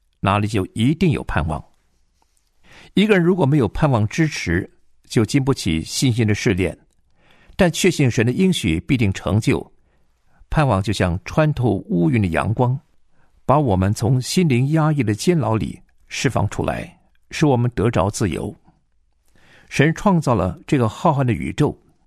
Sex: male